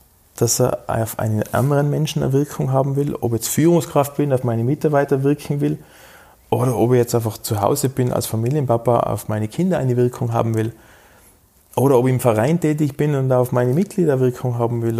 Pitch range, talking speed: 115-145 Hz, 205 wpm